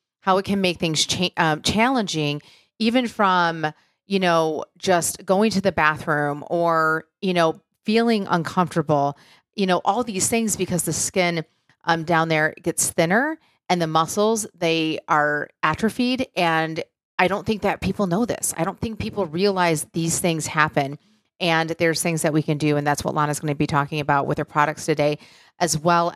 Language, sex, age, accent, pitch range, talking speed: English, female, 30-49, American, 160-190 Hz, 180 wpm